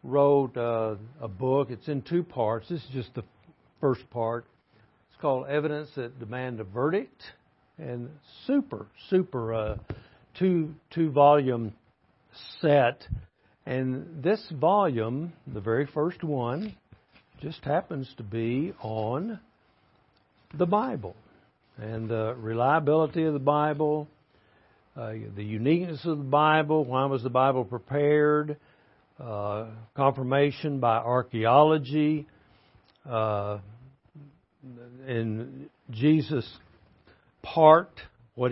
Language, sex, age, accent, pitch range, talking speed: English, male, 60-79, American, 115-150 Hz, 105 wpm